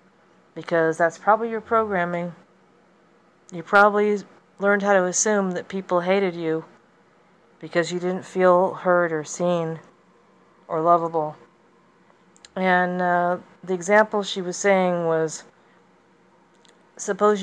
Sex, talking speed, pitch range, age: female, 115 wpm, 155-180 Hz, 40-59